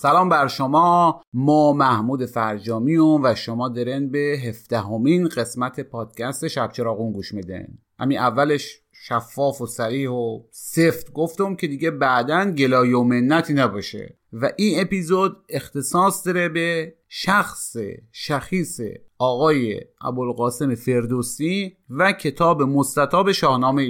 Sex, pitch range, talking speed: male, 120-160 Hz, 120 wpm